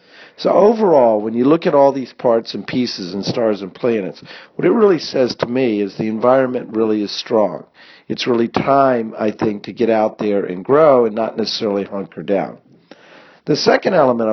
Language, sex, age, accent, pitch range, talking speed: English, male, 50-69, American, 105-125 Hz, 195 wpm